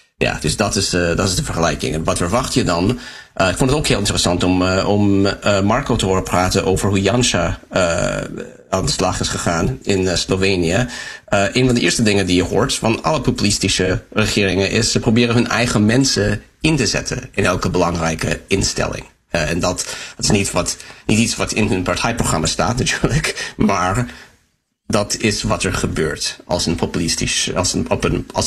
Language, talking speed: Dutch, 200 wpm